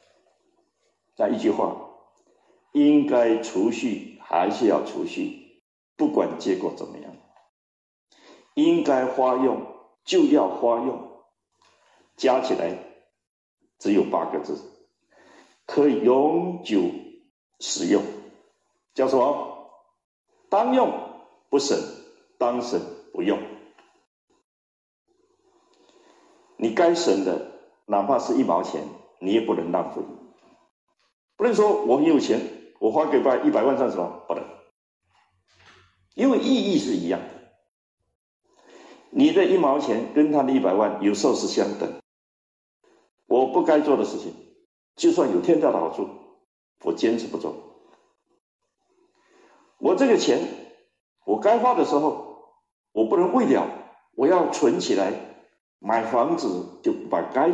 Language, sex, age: Chinese, male, 50-69